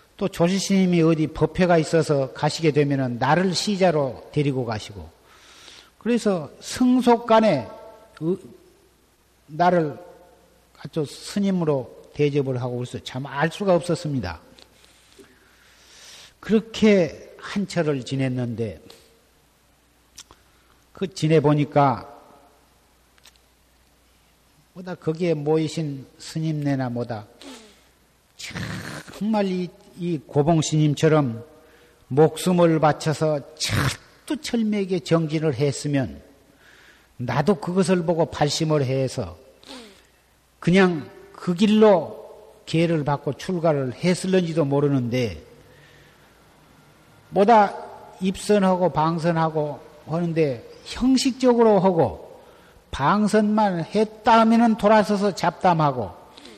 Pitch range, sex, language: 140-190 Hz, male, Korean